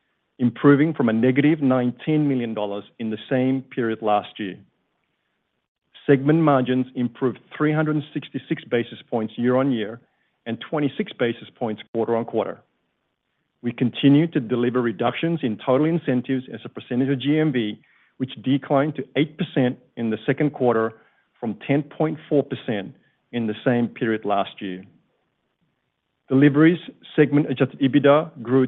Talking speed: 120 wpm